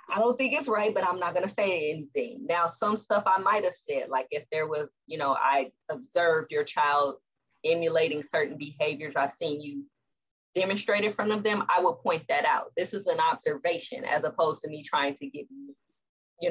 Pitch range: 160-250 Hz